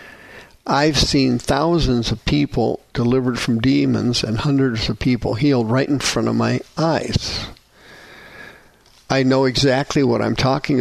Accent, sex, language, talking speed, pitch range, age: American, male, English, 140 wpm, 115-140 Hz, 50-69